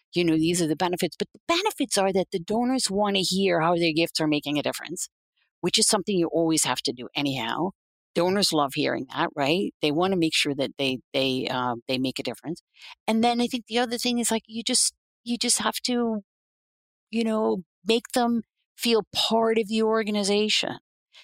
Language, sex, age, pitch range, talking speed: English, female, 50-69, 160-235 Hz, 210 wpm